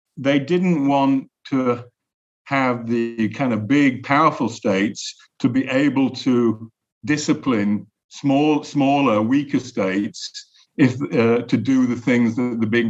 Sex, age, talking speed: male, 50-69, 135 wpm